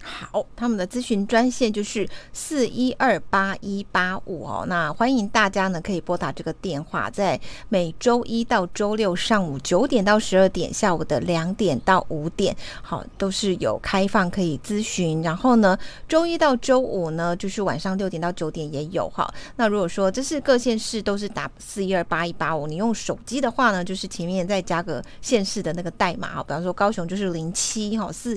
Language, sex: Chinese, female